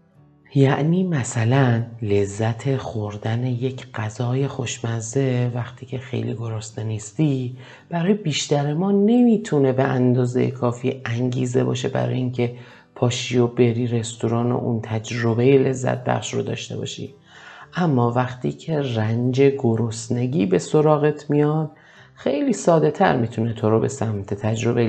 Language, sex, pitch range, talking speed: Persian, male, 115-135 Hz, 125 wpm